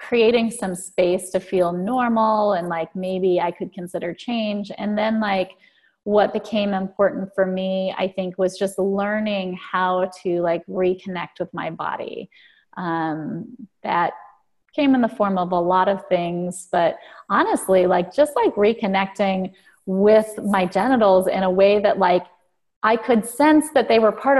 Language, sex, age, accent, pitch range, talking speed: English, female, 30-49, American, 185-230 Hz, 160 wpm